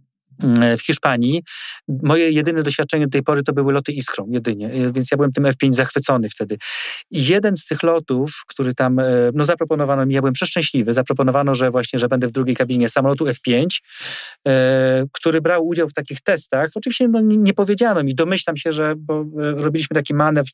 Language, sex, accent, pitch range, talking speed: Polish, male, native, 130-160 Hz, 180 wpm